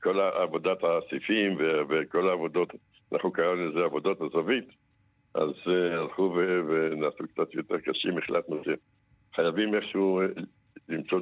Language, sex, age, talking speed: Hebrew, male, 60-79, 125 wpm